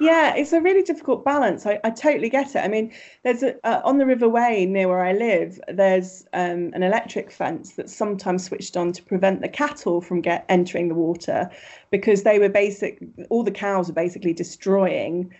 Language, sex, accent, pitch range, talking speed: English, female, British, 180-230 Hz, 205 wpm